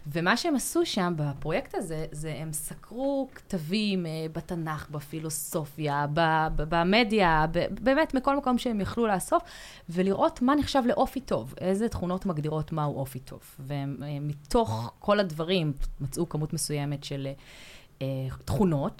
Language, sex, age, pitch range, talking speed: Hebrew, female, 20-39, 140-190 Hz, 140 wpm